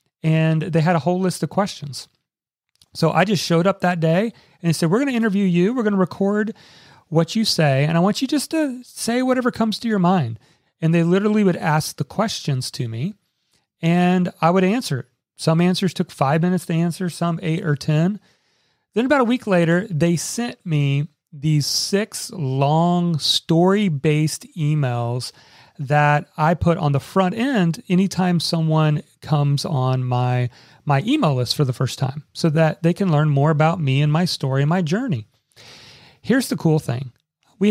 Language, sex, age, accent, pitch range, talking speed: English, male, 40-59, American, 145-190 Hz, 185 wpm